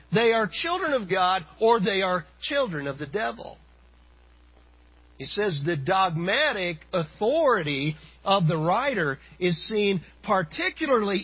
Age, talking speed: 50-69, 125 wpm